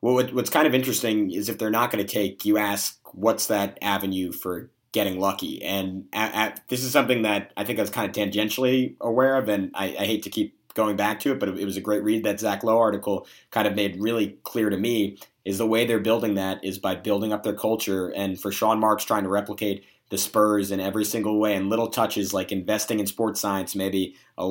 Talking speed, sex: 235 wpm, male